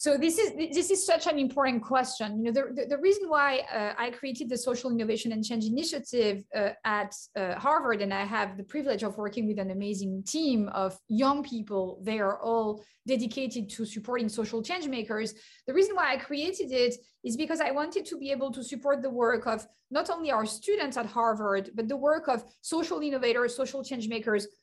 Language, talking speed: English, 205 wpm